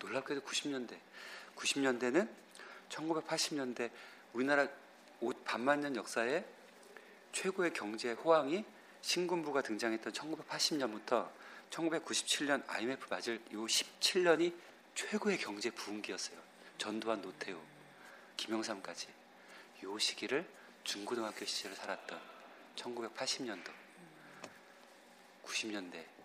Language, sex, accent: Korean, male, native